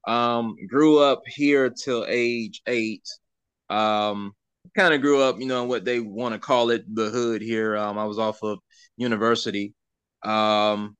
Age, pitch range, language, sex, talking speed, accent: 20-39, 105-125 Hz, English, male, 165 wpm, American